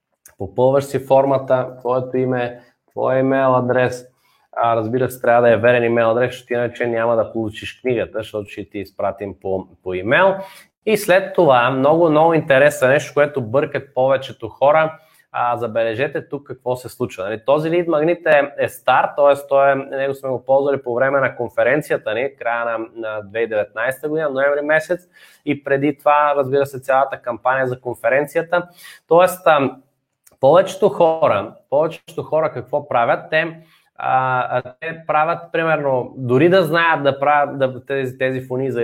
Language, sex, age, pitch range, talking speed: Bulgarian, male, 20-39, 125-160 Hz, 155 wpm